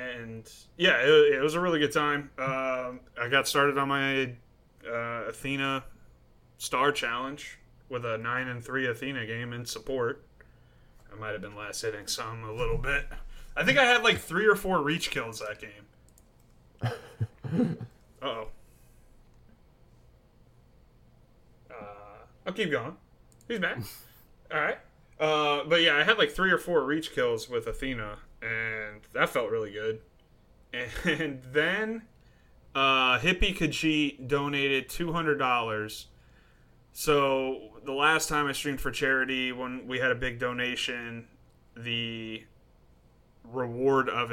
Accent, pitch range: American, 110-145 Hz